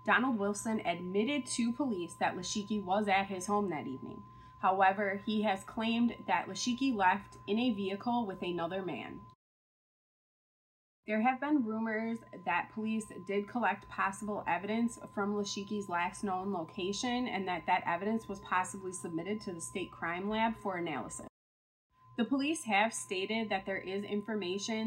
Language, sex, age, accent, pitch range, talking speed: English, female, 20-39, American, 185-225 Hz, 150 wpm